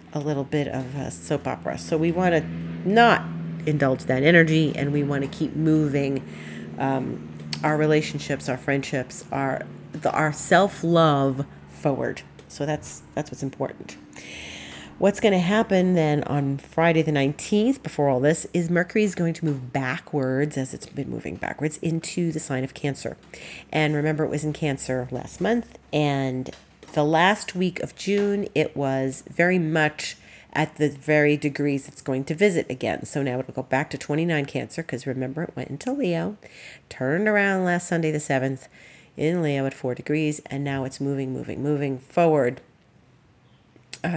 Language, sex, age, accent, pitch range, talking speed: English, female, 40-59, American, 135-170 Hz, 170 wpm